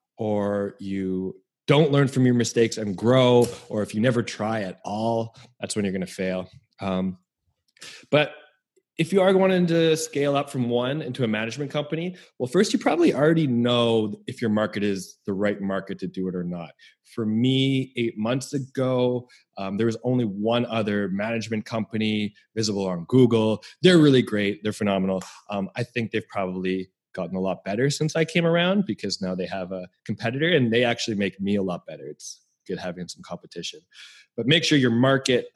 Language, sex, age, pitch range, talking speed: English, male, 20-39, 100-125 Hz, 190 wpm